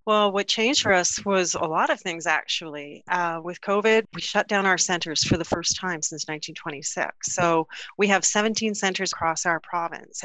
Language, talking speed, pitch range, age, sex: English, 195 wpm, 170-215 Hz, 30-49, female